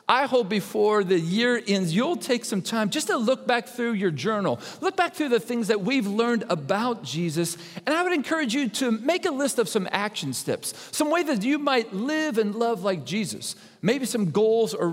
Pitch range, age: 180-255 Hz, 40-59